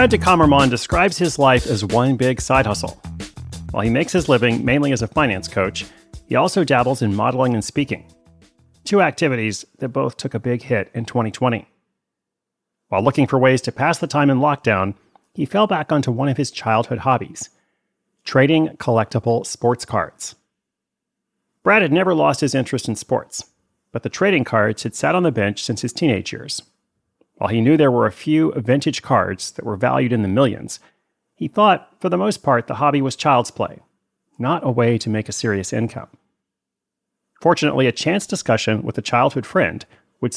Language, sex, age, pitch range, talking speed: English, male, 30-49, 115-145 Hz, 185 wpm